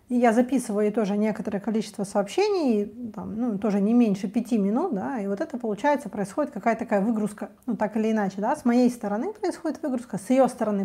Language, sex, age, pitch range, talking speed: Russian, female, 30-49, 210-260 Hz, 200 wpm